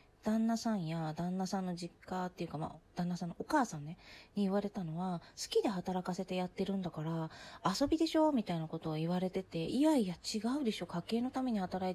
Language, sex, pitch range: Japanese, female, 170-225 Hz